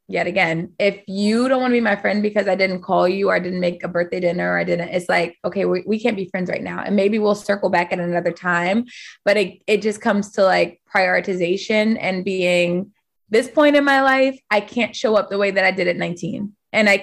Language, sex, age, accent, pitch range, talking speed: English, female, 20-39, American, 190-250 Hz, 250 wpm